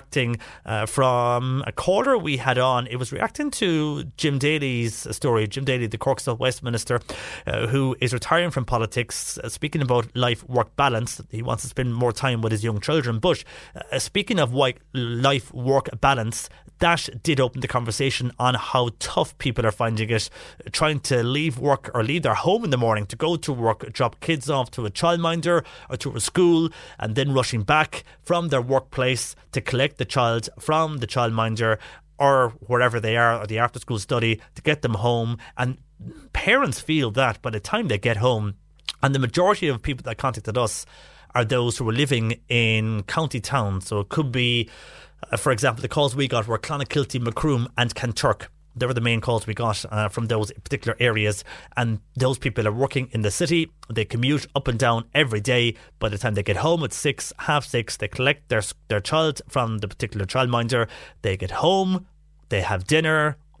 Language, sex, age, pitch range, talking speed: English, male, 30-49, 115-140 Hz, 195 wpm